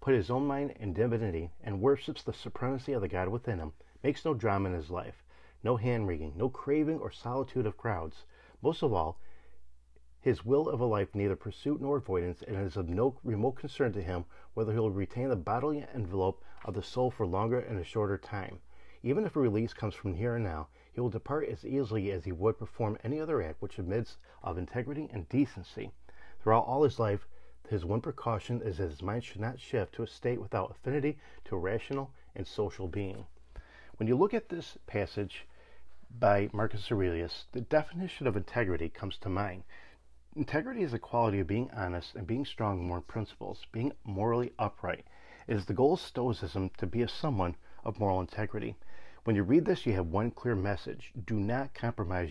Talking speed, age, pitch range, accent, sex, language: 200 wpm, 40-59, 95-125 Hz, American, male, English